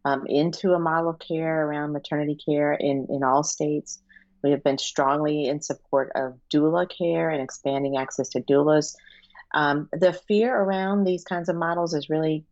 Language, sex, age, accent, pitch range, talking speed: English, female, 40-59, American, 135-155 Hz, 175 wpm